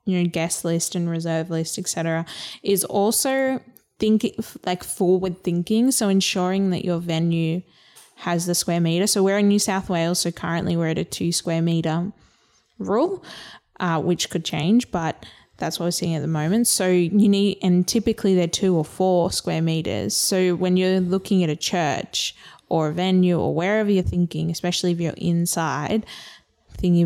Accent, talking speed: Australian, 175 wpm